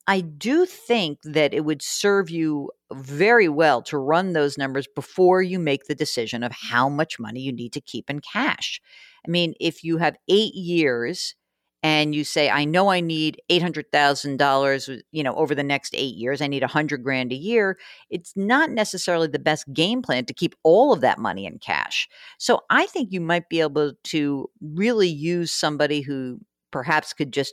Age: 50-69